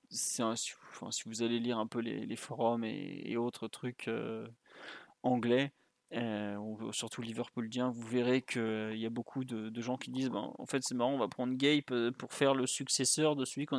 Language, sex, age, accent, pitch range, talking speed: French, male, 20-39, French, 120-135 Hz, 225 wpm